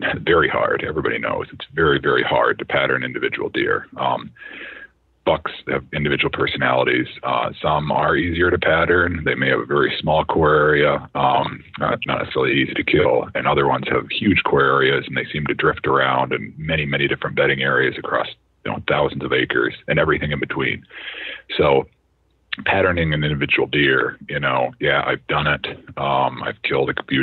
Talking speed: 185 wpm